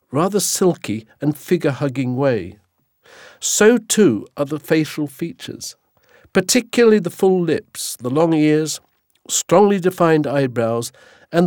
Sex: male